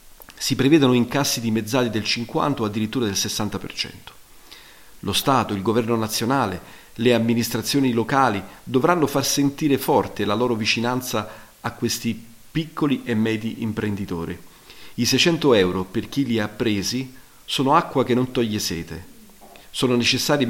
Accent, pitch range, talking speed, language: native, 105-135 Hz, 140 wpm, Italian